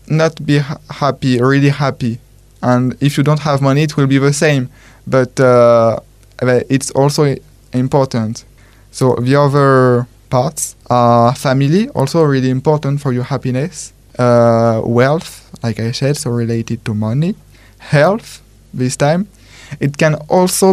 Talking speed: 140 wpm